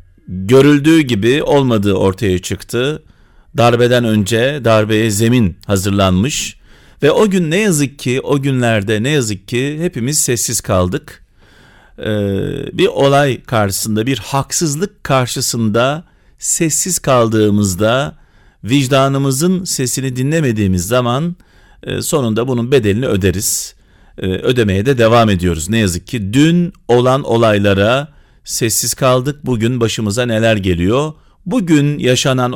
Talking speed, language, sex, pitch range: 105 wpm, Turkish, male, 105-145 Hz